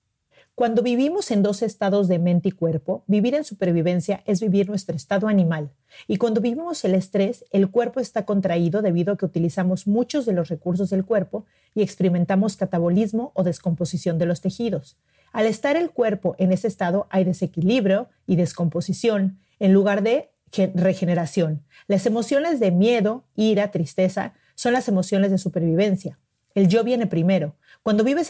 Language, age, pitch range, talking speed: Spanish, 40-59, 180-225 Hz, 160 wpm